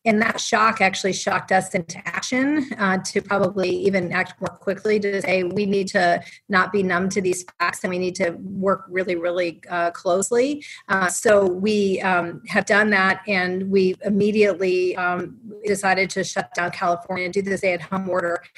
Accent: American